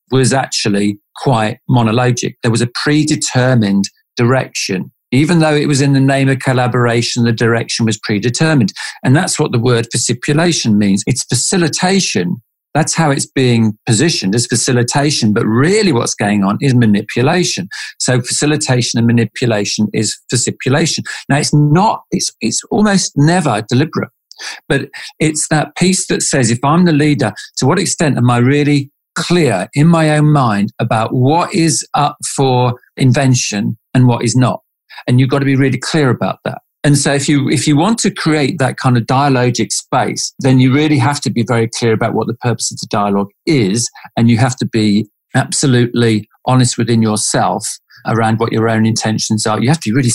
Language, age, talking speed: English, 50-69, 180 wpm